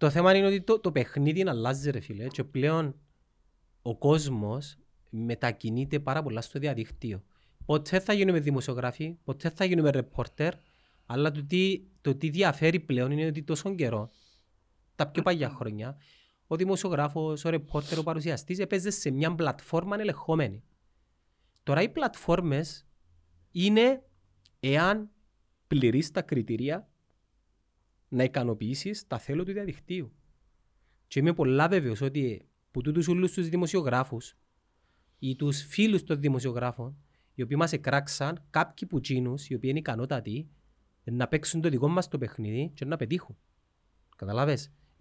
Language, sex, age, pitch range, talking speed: Greek, male, 30-49, 115-160 Hz, 135 wpm